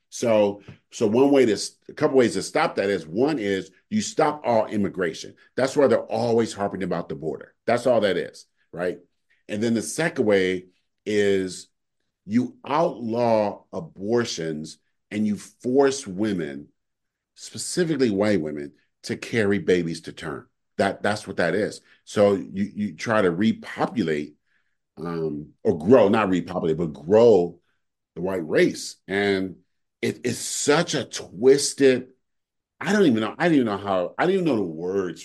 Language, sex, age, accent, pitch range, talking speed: English, male, 40-59, American, 95-130 Hz, 160 wpm